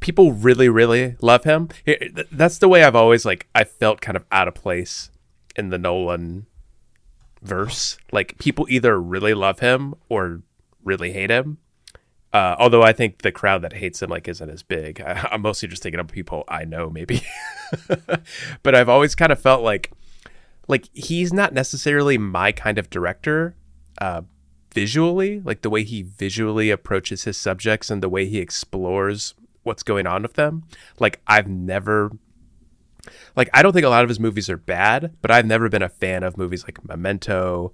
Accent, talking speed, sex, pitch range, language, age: American, 180 wpm, male, 90-120 Hz, English, 30-49